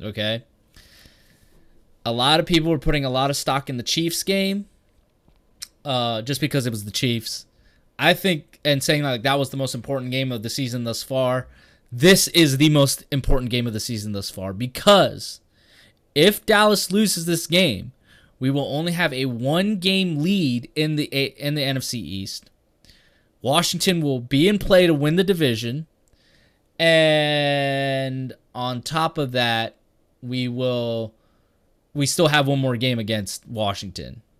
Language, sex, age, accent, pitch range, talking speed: English, male, 20-39, American, 115-155 Hz, 160 wpm